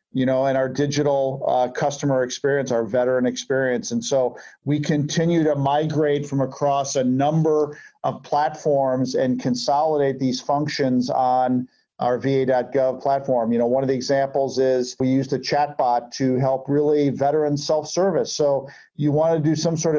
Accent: American